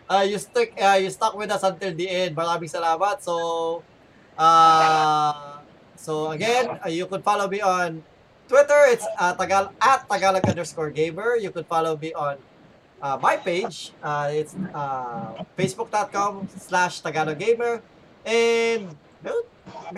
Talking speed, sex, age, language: 130 wpm, male, 20-39, Filipino